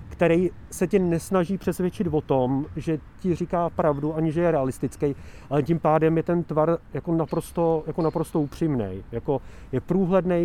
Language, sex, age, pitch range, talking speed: Czech, male, 30-49, 150-175 Hz, 165 wpm